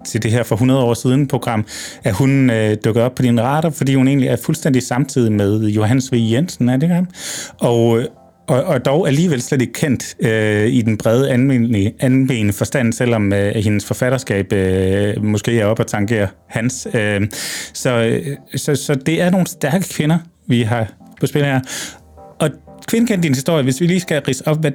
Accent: native